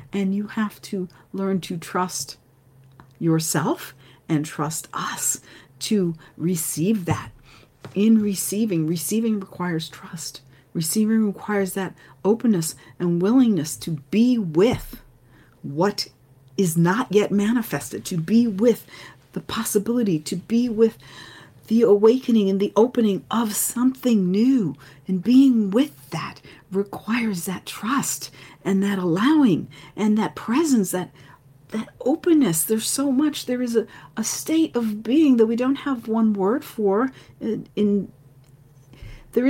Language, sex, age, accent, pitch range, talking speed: English, female, 40-59, American, 155-230 Hz, 130 wpm